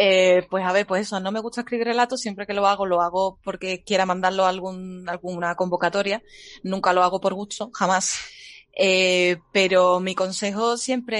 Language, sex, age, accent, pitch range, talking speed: Spanish, female, 20-39, Spanish, 170-200 Hz, 190 wpm